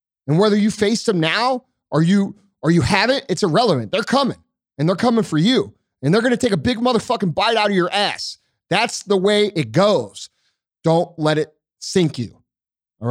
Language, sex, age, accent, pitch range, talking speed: English, male, 30-49, American, 150-215 Hz, 200 wpm